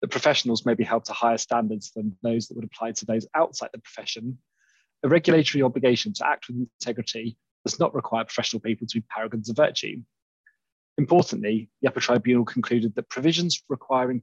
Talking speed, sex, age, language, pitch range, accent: 180 wpm, male, 20-39, English, 115-130 Hz, British